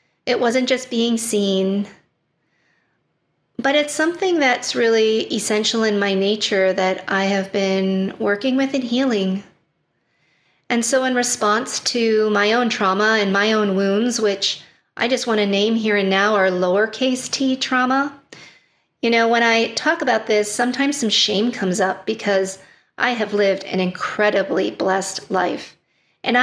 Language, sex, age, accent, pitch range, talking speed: English, female, 40-59, American, 195-235 Hz, 155 wpm